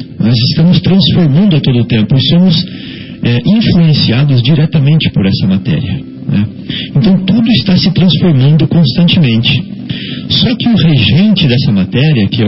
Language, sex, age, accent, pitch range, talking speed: Portuguese, male, 50-69, Brazilian, 130-180 Hz, 135 wpm